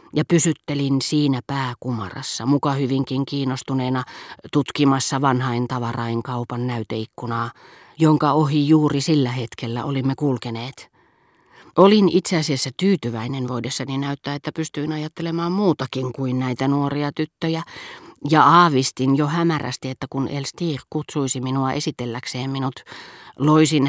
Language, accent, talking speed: Finnish, native, 115 wpm